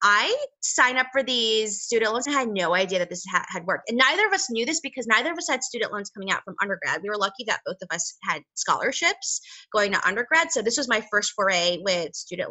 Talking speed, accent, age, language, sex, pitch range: 255 wpm, American, 20-39, English, female, 190-250 Hz